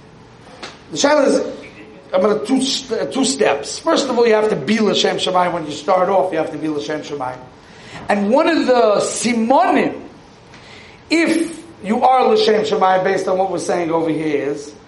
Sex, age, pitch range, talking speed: male, 40-59, 205-275 Hz, 180 wpm